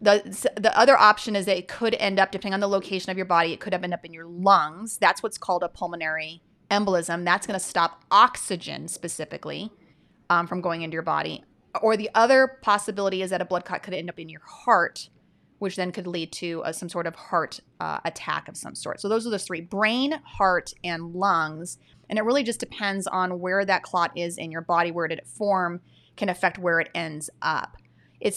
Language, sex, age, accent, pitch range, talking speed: English, female, 30-49, American, 175-215 Hz, 220 wpm